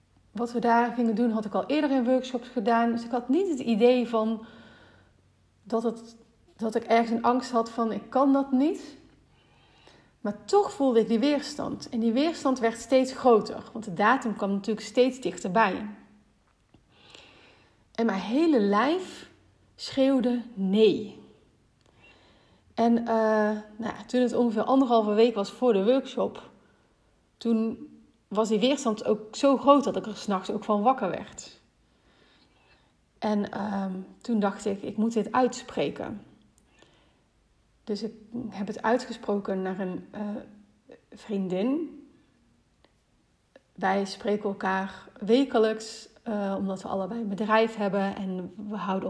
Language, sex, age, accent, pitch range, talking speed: Dutch, female, 30-49, Dutch, 205-250 Hz, 140 wpm